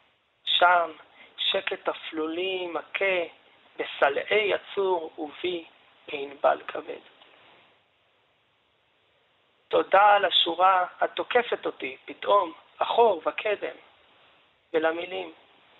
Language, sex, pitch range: Hebrew, male, 160-185 Hz